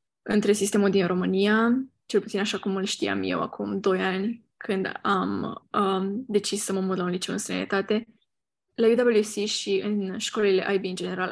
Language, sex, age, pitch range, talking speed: Romanian, female, 10-29, 190-220 Hz, 180 wpm